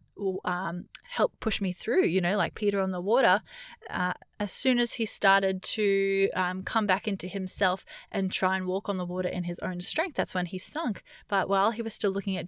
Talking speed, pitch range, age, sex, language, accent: 220 wpm, 185-215 Hz, 20-39, female, English, Australian